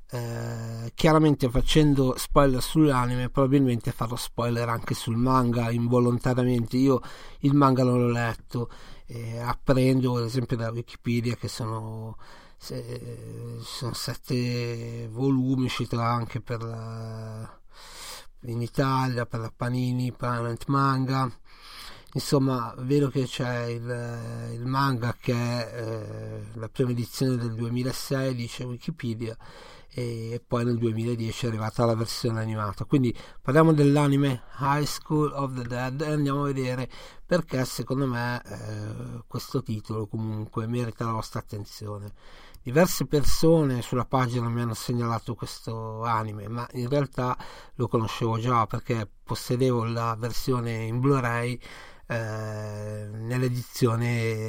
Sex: male